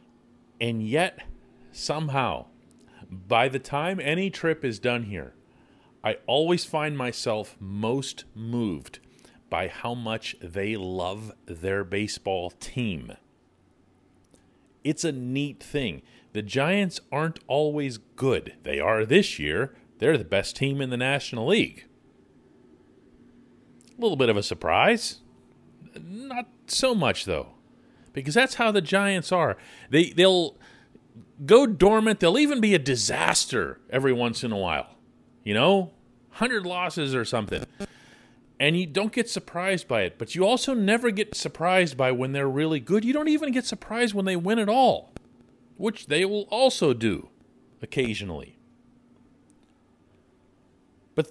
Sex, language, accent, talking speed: male, English, American, 135 wpm